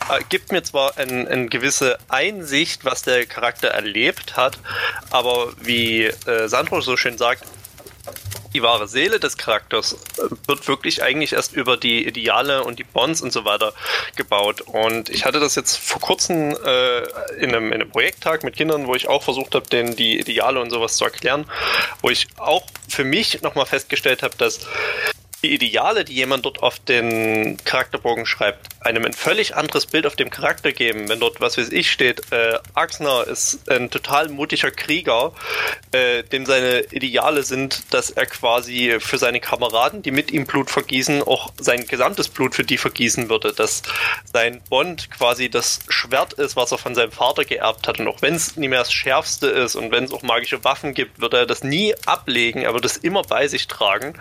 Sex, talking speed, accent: male, 185 wpm, German